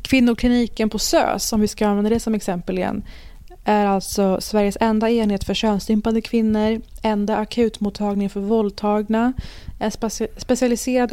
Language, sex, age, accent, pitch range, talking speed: Swedish, female, 20-39, native, 195-235 Hz, 135 wpm